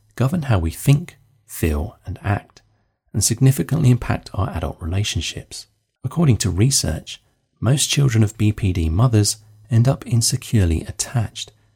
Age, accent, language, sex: 30-49, British, English, male